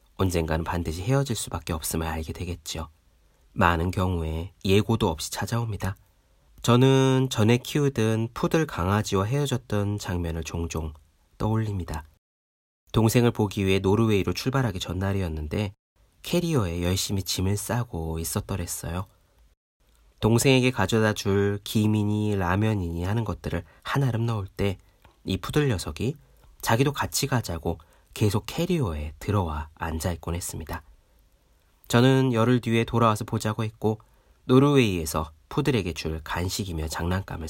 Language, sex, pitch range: Korean, male, 80-115 Hz